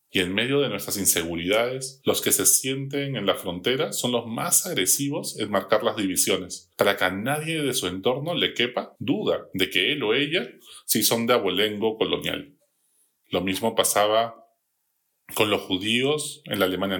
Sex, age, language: male, 30-49, Spanish